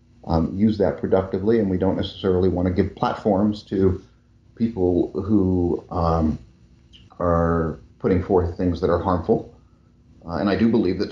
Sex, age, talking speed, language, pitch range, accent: male, 40-59, 155 wpm, English, 100-125 Hz, American